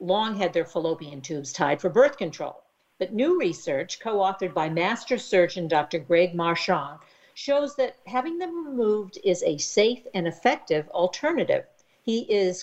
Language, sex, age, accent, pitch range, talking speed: English, female, 50-69, American, 160-210 Hz, 150 wpm